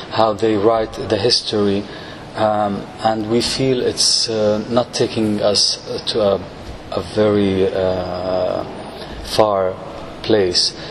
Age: 30-49